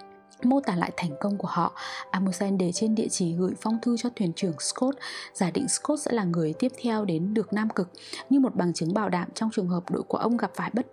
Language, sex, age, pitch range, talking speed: English, female, 20-39, 175-230 Hz, 245 wpm